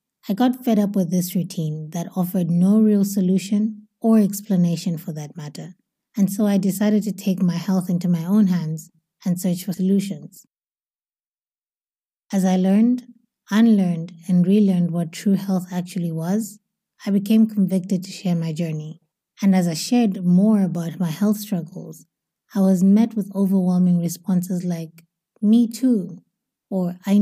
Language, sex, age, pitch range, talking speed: English, female, 20-39, 175-205 Hz, 155 wpm